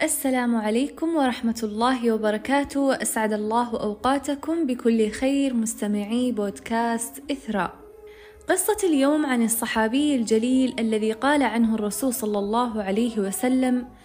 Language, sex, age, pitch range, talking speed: Arabic, female, 20-39, 220-270 Hz, 110 wpm